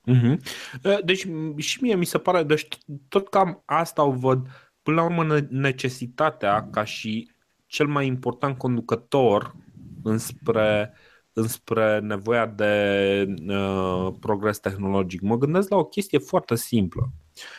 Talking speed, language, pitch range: 125 wpm, Romanian, 105-150 Hz